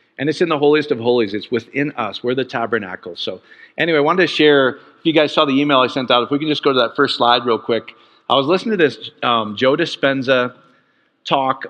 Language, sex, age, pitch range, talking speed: English, male, 40-59, 120-150 Hz, 245 wpm